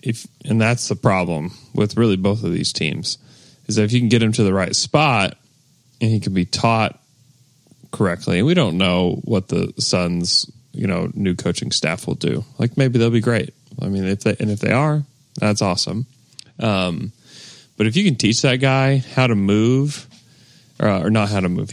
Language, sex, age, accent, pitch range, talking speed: English, male, 30-49, American, 100-130 Hz, 205 wpm